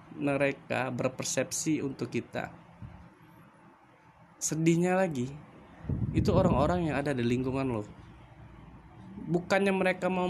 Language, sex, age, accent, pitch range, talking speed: Indonesian, male, 20-39, native, 110-155 Hz, 95 wpm